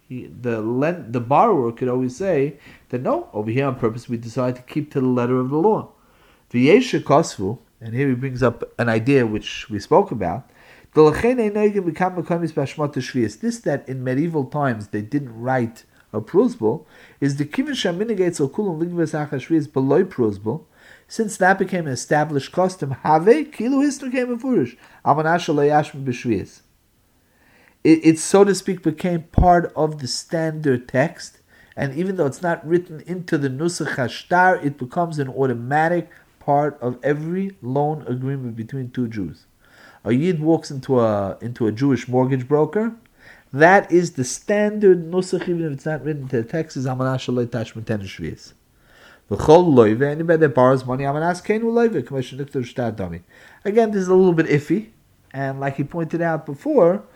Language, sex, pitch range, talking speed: English, male, 125-170 Hz, 155 wpm